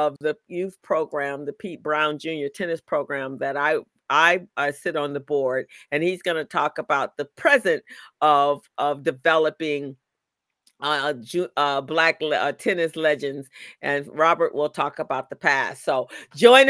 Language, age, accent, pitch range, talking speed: English, 50-69, American, 145-185 Hz, 160 wpm